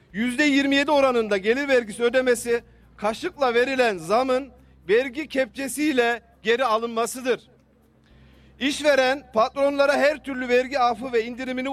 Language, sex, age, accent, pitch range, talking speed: Turkish, male, 40-59, native, 235-275 Hz, 100 wpm